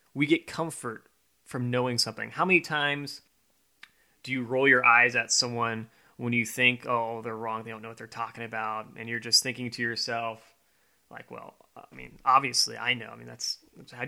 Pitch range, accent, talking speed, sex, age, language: 115-145 Hz, American, 195 wpm, male, 20-39, English